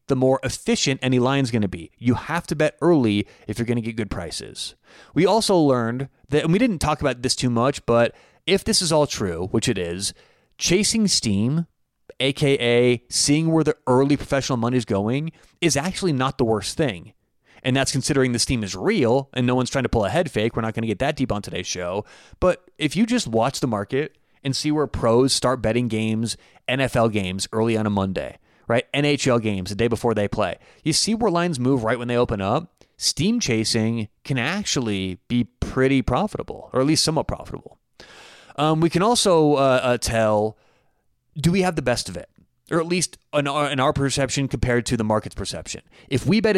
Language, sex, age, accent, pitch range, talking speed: English, male, 30-49, American, 115-155 Hz, 210 wpm